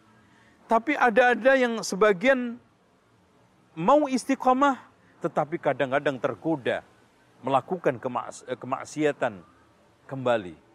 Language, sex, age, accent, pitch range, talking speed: Indonesian, male, 40-59, native, 135-205 Hz, 80 wpm